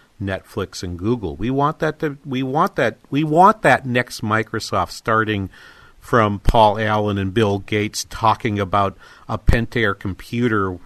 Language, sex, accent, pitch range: English, male, American, 100-125 Hz